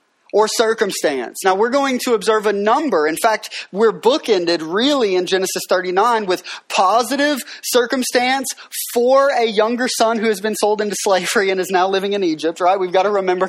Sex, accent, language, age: male, American, English, 30-49